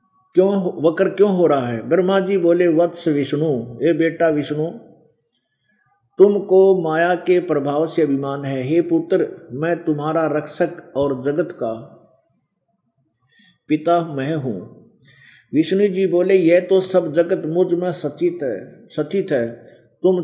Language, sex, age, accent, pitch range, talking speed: Hindi, male, 50-69, native, 140-185 Hz, 135 wpm